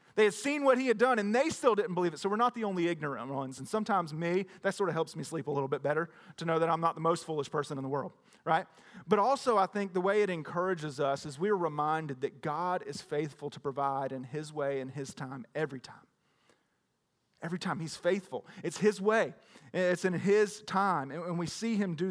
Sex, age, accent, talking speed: male, 40-59, American, 240 wpm